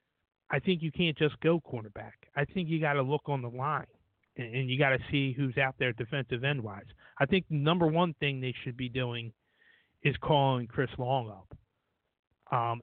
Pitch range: 120-140 Hz